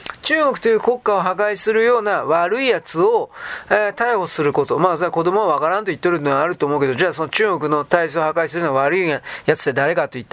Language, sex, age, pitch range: Japanese, male, 30-49, 175-285 Hz